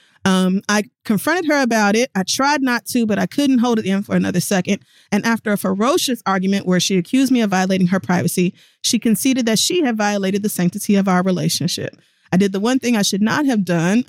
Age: 30-49